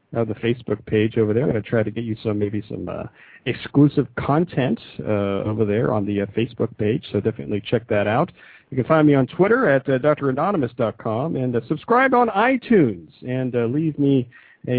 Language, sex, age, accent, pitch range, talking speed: English, male, 50-69, American, 105-150 Hz, 205 wpm